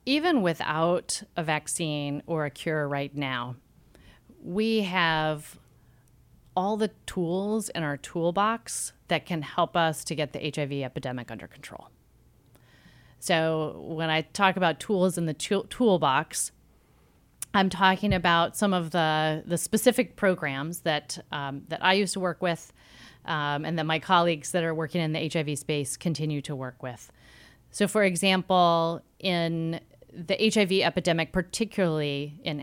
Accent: American